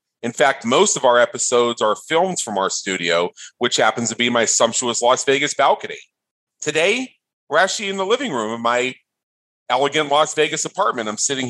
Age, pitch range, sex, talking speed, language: 40-59, 115-155 Hz, male, 185 wpm, English